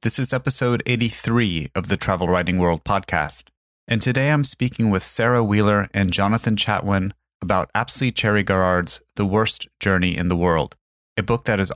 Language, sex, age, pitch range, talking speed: English, male, 30-49, 90-115 Hz, 175 wpm